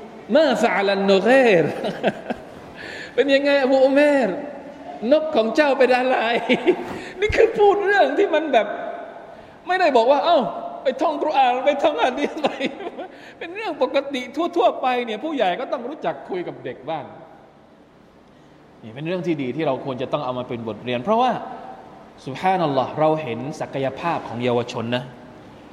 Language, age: Thai, 20-39